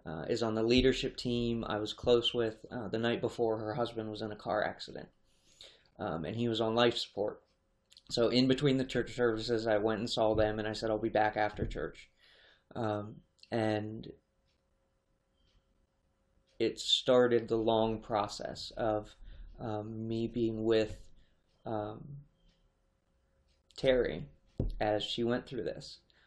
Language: English